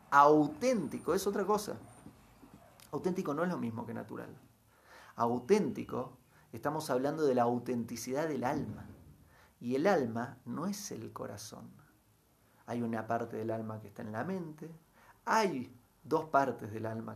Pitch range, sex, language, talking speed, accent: 115-155 Hz, male, Spanish, 145 wpm, Argentinian